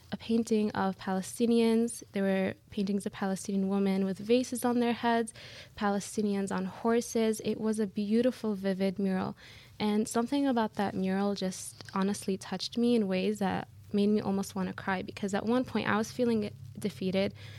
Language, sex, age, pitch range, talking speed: English, female, 20-39, 190-220 Hz, 170 wpm